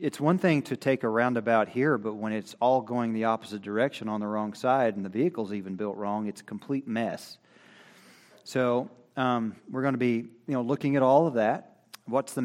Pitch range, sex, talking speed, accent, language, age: 115-145 Hz, male, 215 wpm, American, English, 40-59